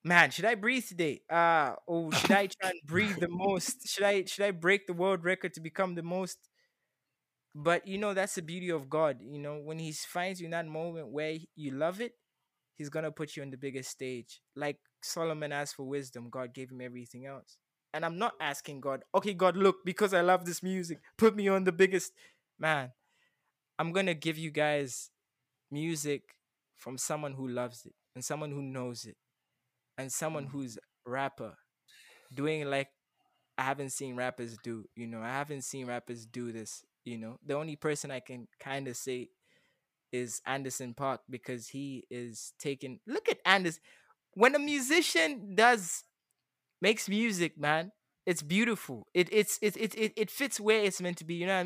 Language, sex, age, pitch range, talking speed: English, male, 20-39, 135-190 Hz, 190 wpm